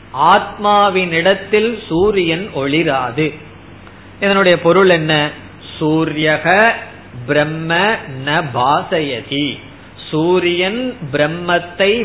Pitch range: 140-190 Hz